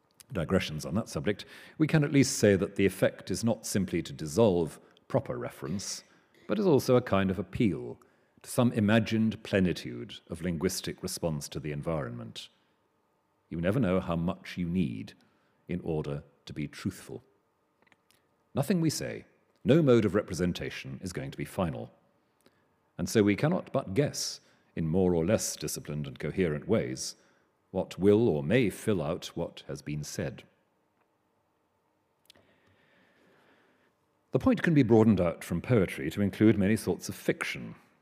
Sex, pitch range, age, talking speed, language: male, 90-115 Hz, 40-59, 155 wpm, English